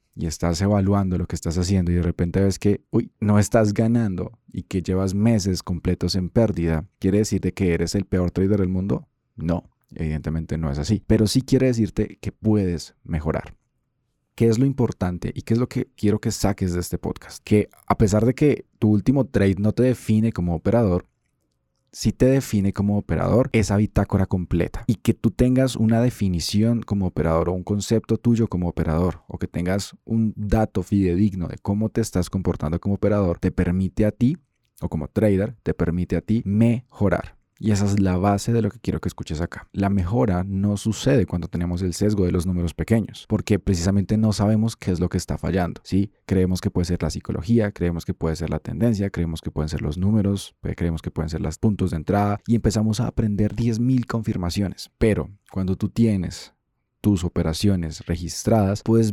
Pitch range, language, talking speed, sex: 90-110 Hz, Spanish, 195 wpm, male